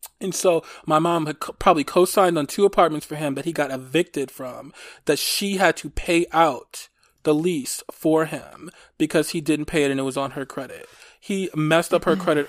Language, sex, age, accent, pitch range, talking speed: English, male, 20-39, American, 140-175 Hz, 205 wpm